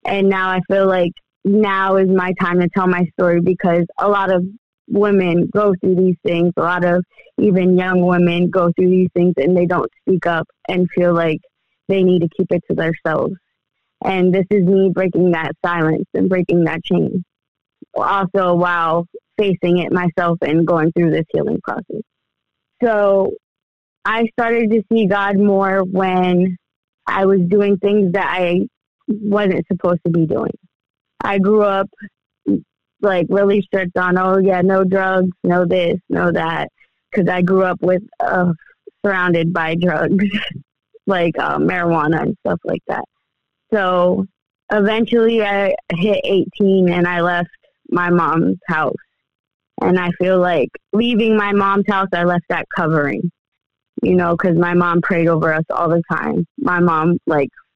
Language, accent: English, American